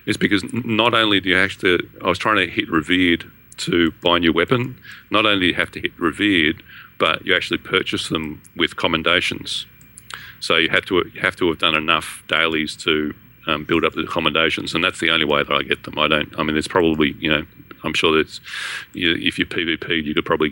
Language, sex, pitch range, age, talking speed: English, male, 90-120 Hz, 40-59, 230 wpm